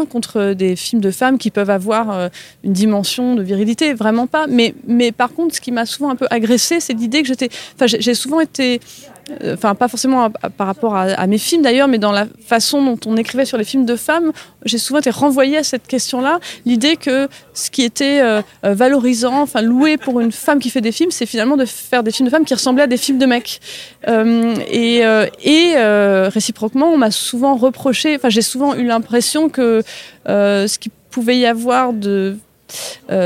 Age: 20-39